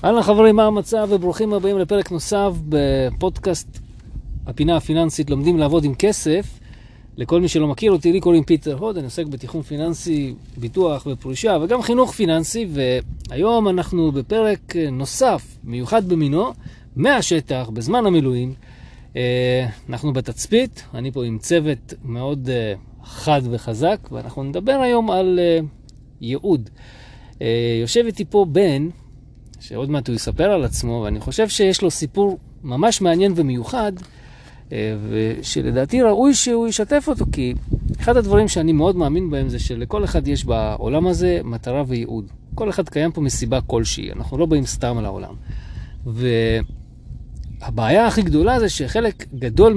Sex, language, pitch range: male, Hebrew, 125-190 Hz